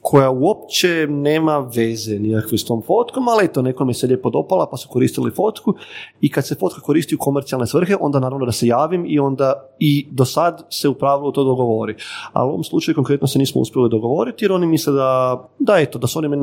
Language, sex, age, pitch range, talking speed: Croatian, male, 30-49, 120-155 Hz, 215 wpm